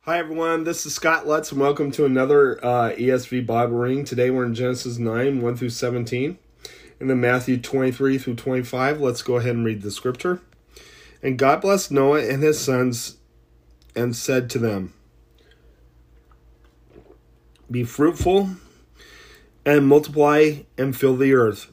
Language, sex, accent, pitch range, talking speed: English, male, American, 110-140 Hz, 150 wpm